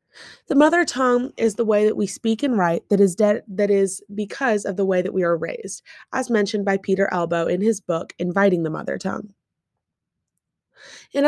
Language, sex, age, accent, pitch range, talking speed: English, female, 20-39, American, 180-230 Hz, 195 wpm